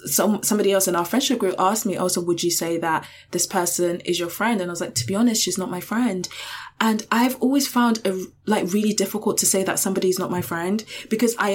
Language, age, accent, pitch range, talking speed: English, 20-39, British, 180-210 Hz, 245 wpm